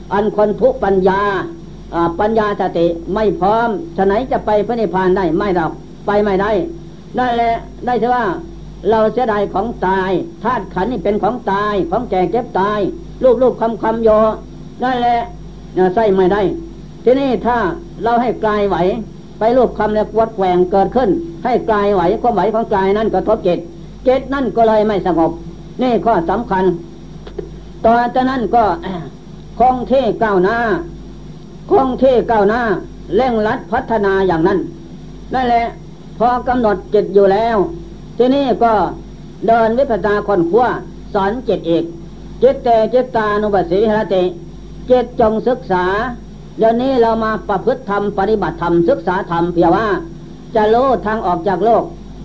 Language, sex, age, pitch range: Thai, female, 60-79, 185-230 Hz